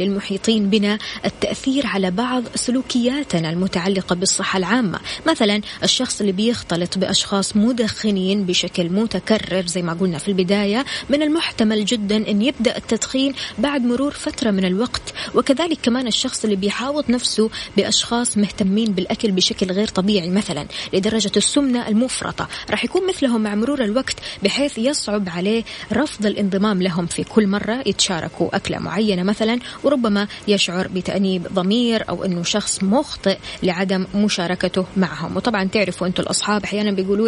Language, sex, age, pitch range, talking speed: Arabic, female, 20-39, 190-235 Hz, 135 wpm